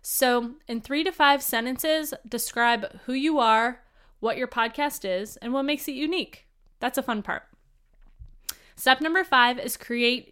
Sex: female